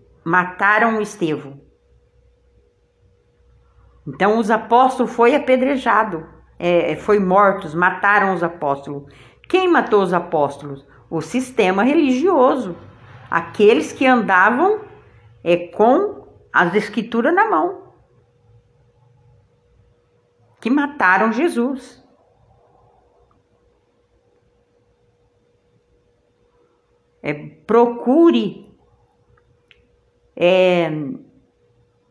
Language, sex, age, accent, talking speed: Portuguese, female, 50-69, Brazilian, 60 wpm